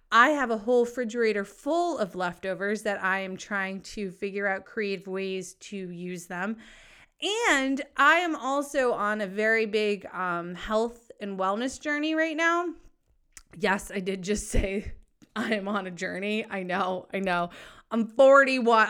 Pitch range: 180-255 Hz